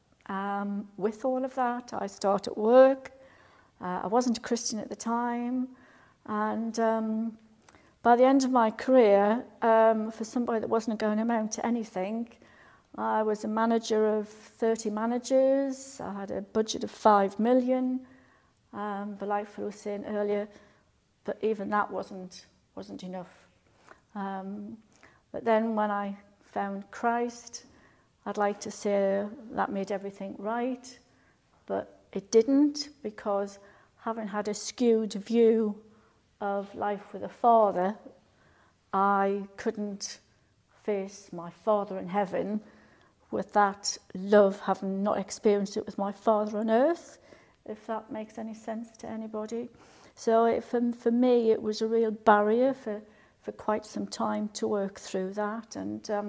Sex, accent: female, British